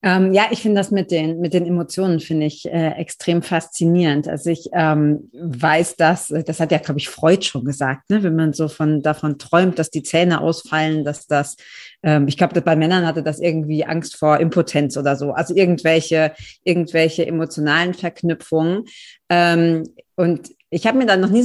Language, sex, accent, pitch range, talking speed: German, female, German, 160-195 Hz, 185 wpm